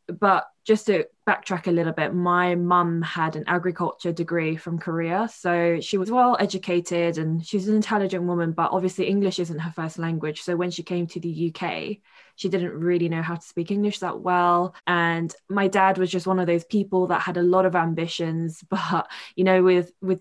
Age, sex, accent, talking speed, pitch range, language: 20-39, female, British, 205 wpm, 165-185 Hz, English